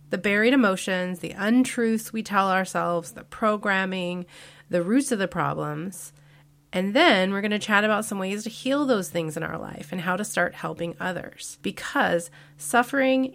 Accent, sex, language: American, female, English